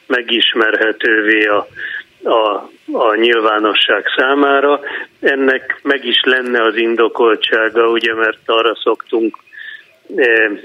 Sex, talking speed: male, 95 wpm